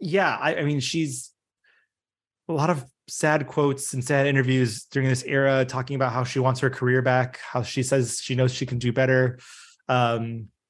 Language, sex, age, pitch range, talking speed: English, male, 20-39, 125-145 Hz, 190 wpm